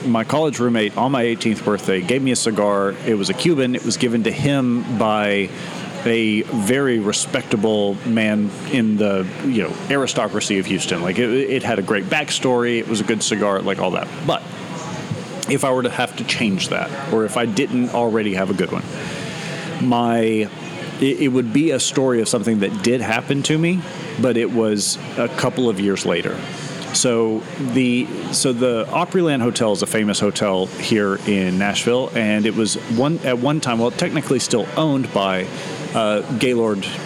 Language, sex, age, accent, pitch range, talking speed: English, male, 40-59, American, 105-140 Hz, 185 wpm